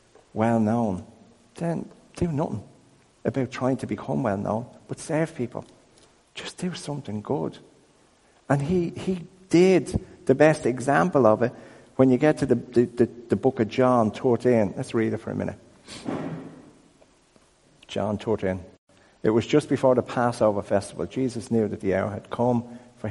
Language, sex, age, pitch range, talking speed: English, male, 50-69, 95-120 Hz, 155 wpm